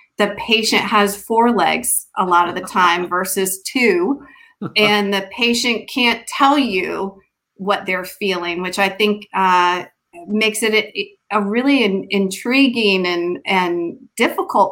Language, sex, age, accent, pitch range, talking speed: English, female, 30-49, American, 180-230 Hz, 135 wpm